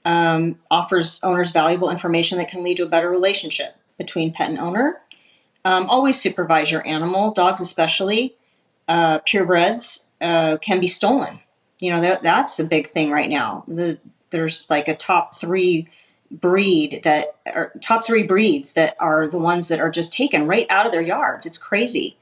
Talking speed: 170 wpm